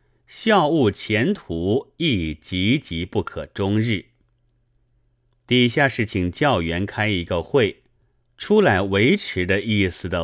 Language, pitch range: Chinese, 90-125 Hz